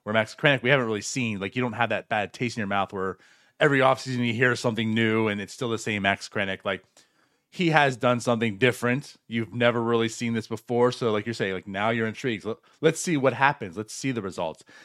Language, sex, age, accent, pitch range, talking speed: English, male, 30-49, American, 105-130 Hz, 240 wpm